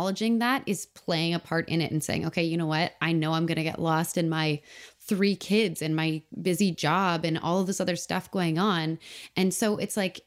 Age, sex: 20-39, female